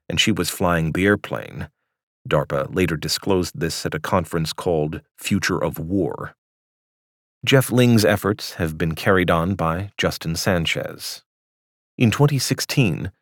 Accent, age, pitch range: American, 40-59, 85-110 Hz